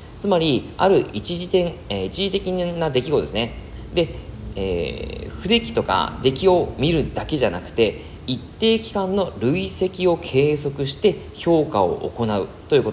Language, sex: Japanese, male